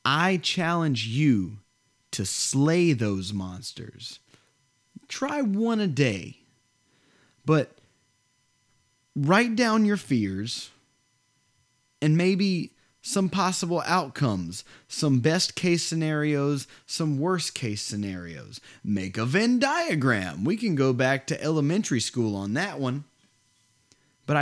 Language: English